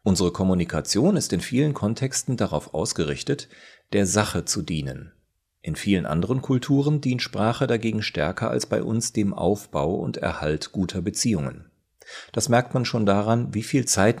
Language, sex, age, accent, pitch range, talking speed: German, male, 40-59, German, 85-115 Hz, 155 wpm